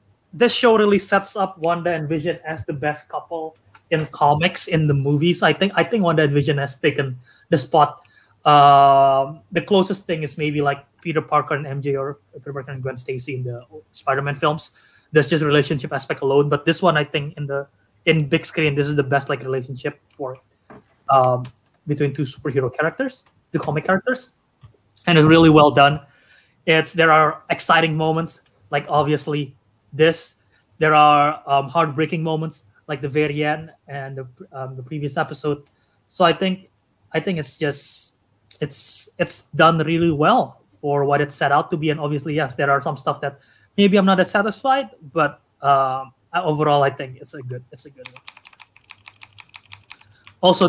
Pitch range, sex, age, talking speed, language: 135-160 Hz, male, 20-39, 180 wpm, English